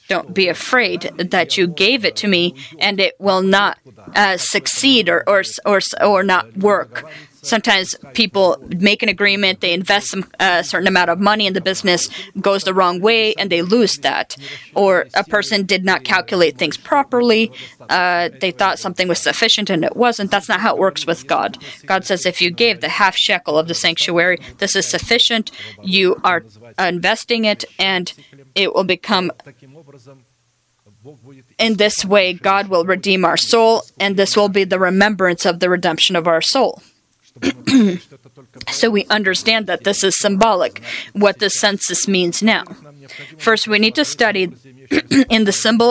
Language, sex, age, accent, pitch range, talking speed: English, female, 30-49, American, 175-210 Hz, 170 wpm